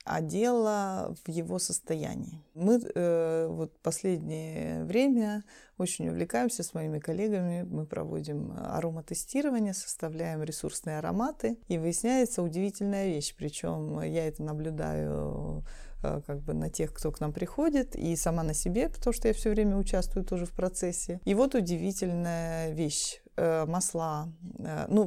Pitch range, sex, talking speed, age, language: 155-205 Hz, female, 140 wpm, 20-39, Russian